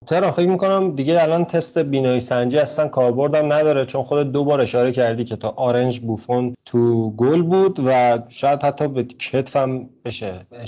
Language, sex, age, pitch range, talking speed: Persian, male, 30-49, 125-155 Hz, 165 wpm